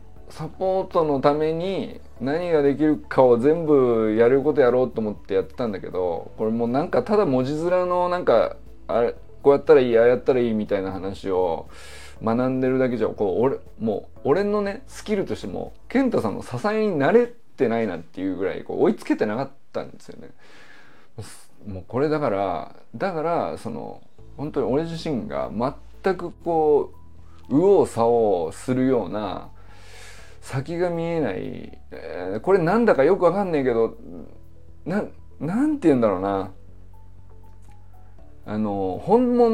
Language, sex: Japanese, male